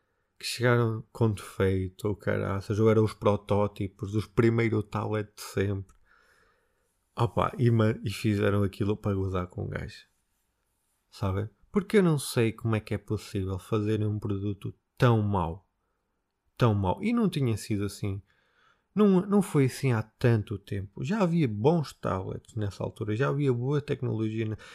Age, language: 20-39, Portuguese